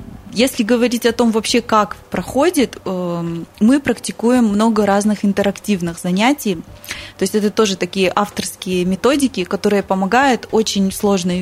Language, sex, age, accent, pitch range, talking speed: Russian, female, 20-39, native, 190-235 Hz, 125 wpm